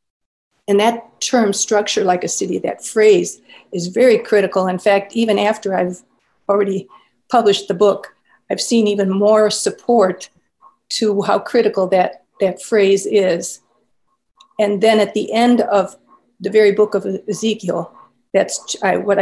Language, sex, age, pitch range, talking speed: English, female, 50-69, 190-220 Hz, 145 wpm